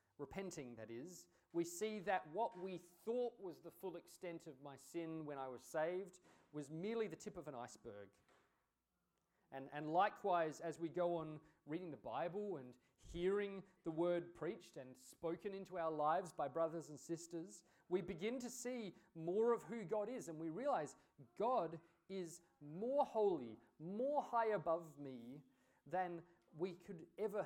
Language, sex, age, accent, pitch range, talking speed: English, male, 30-49, Australian, 150-205 Hz, 165 wpm